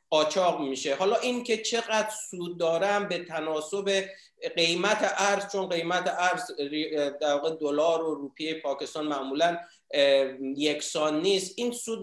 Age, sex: 50-69, male